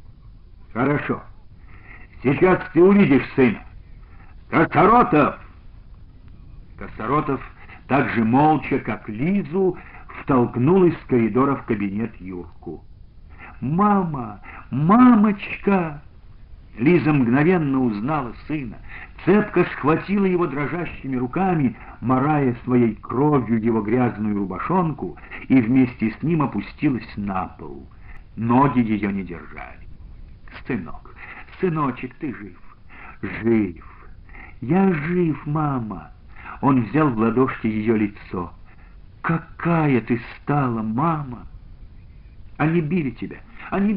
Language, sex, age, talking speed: Russian, male, 60-79, 95 wpm